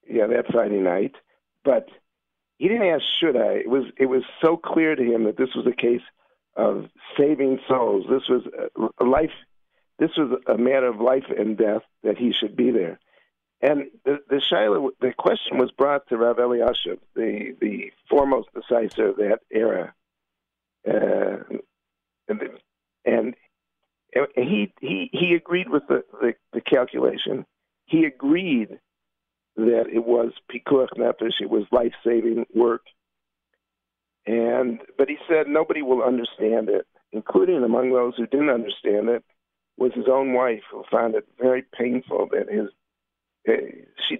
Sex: male